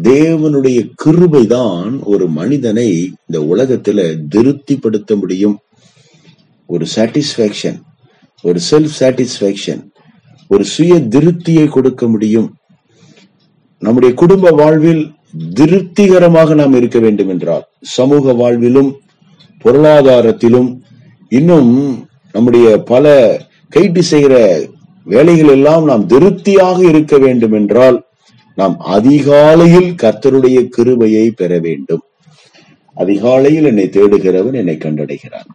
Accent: native